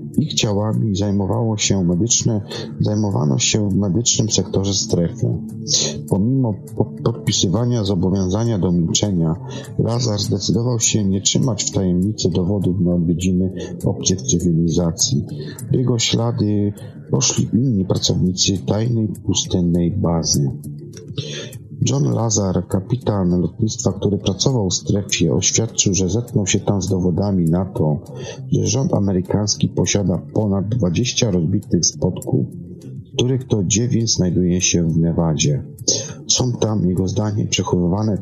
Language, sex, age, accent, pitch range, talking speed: Polish, male, 40-59, native, 90-115 Hz, 115 wpm